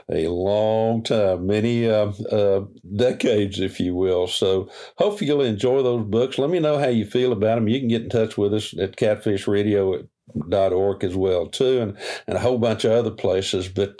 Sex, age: male, 50-69